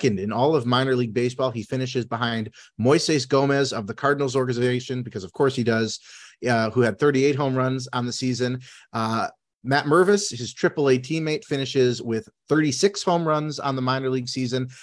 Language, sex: English, male